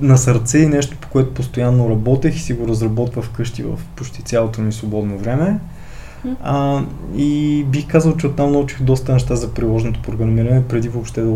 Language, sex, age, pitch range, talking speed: Bulgarian, male, 20-39, 115-140 Hz, 180 wpm